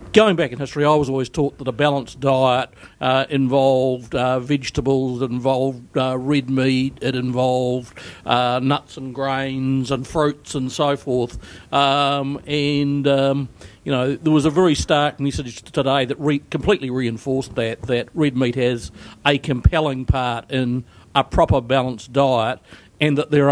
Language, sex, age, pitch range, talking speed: English, male, 60-79, 125-145 Hz, 160 wpm